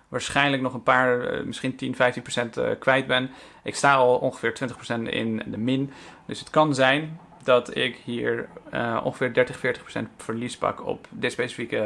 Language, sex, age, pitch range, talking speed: Dutch, male, 40-59, 120-135 Hz, 155 wpm